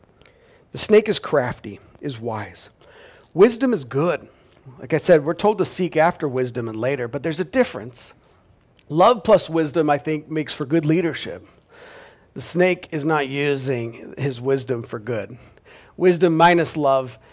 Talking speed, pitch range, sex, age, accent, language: 155 wpm, 120-175 Hz, male, 40-59, American, English